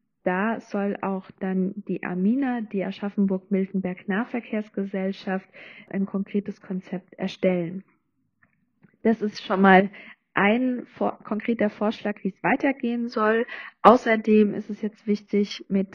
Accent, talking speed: German, 110 wpm